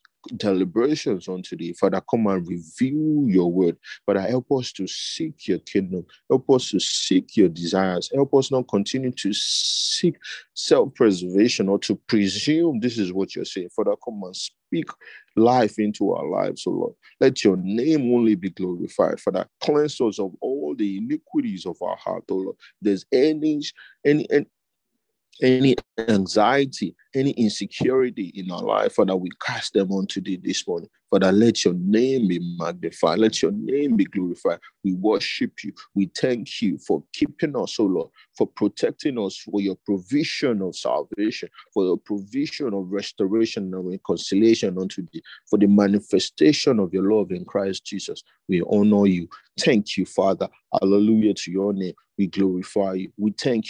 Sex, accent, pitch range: male, Nigerian, 95-125 Hz